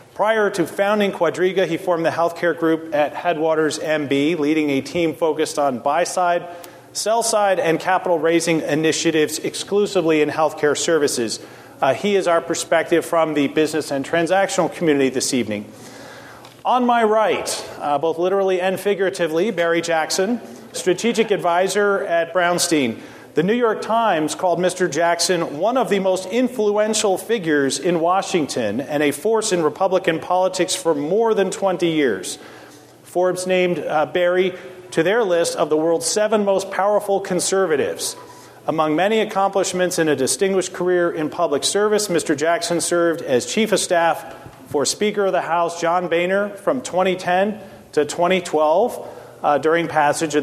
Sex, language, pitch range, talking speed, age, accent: male, English, 160-195 Hz, 150 wpm, 40-59, American